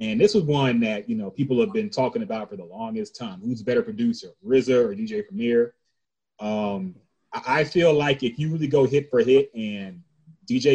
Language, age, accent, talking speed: English, 30-49, American, 200 wpm